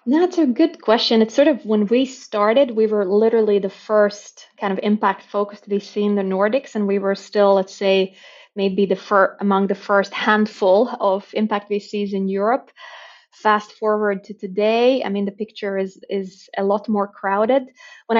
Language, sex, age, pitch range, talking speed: English, female, 20-39, 195-220 Hz, 190 wpm